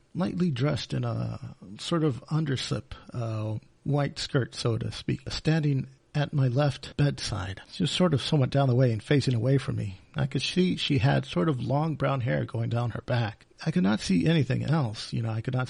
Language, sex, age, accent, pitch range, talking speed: English, male, 40-59, American, 120-150 Hz, 210 wpm